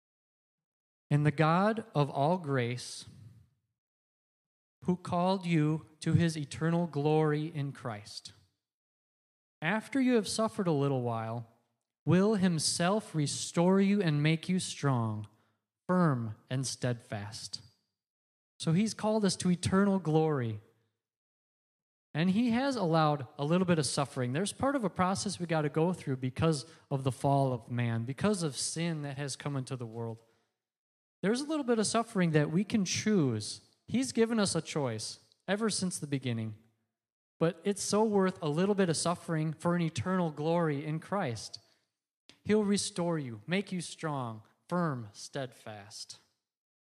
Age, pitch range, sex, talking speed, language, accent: 30-49, 120-185 Hz, male, 150 wpm, English, American